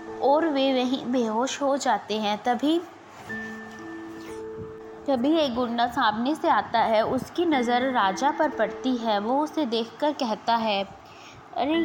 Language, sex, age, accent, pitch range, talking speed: Hindi, female, 20-39, native, 215-275 Hz, 135 wpm